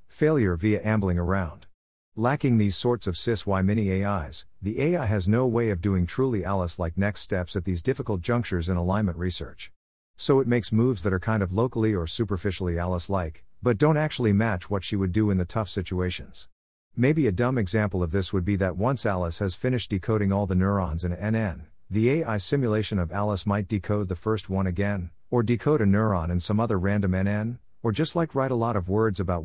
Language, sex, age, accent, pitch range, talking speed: English, male, 50-69, American, 90-115 Hz, 210 wpm